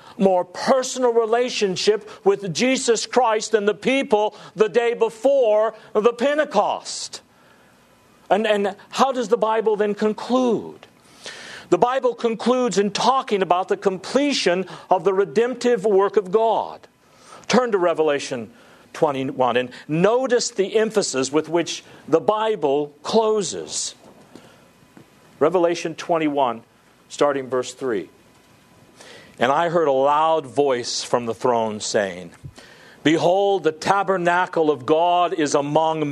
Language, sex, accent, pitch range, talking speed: English, male, American, 150-215 Hz, 120 wpm